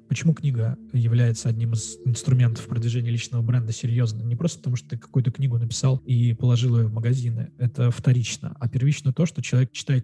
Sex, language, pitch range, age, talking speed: male, Russian, 120-135 Hz, 20-39, 185 wpm